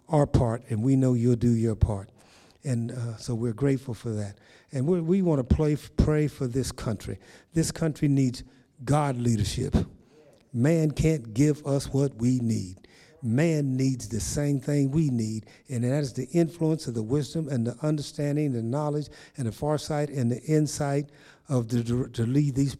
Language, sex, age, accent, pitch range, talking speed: English, male, 50-69, American, 120-145 Hz, 180 wpm